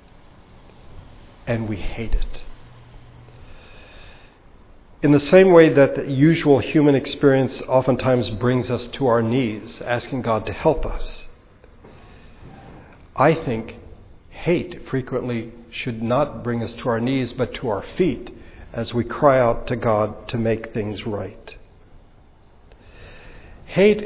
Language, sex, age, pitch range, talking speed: English, male, 60-79, 110-135 Hz, 125 wpm